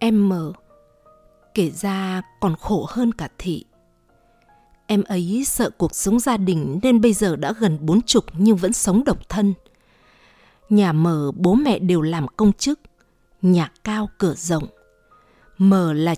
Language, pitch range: Vietnamese, 165-215 Hz